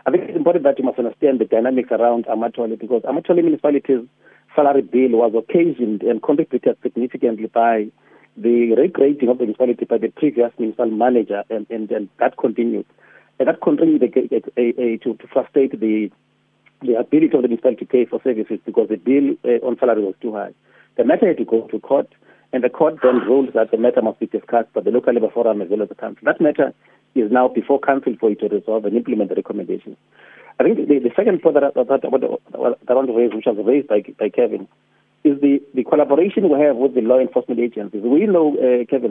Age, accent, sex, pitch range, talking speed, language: 40-59, South African, male, 115-140 Hz, 215 wpm, English